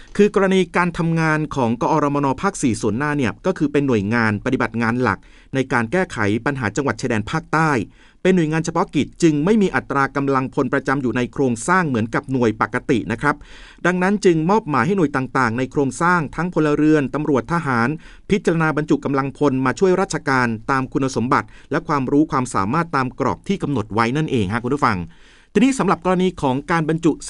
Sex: male